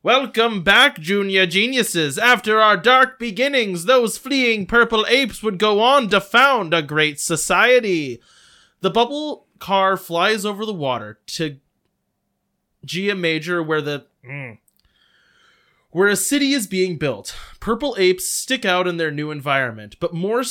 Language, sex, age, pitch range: English, male, 20-39, 155-220 Hz